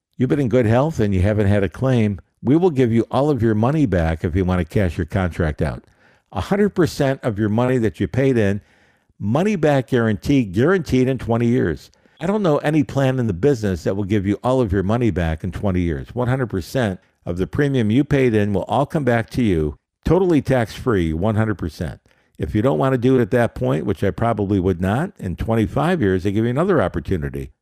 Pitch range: 90-125 Hz